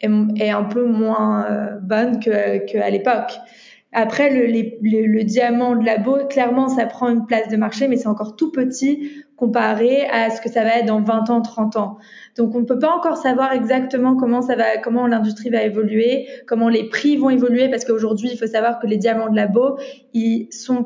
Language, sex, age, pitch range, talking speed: French, female, 20-39, 215-250 Hz, 205 wpm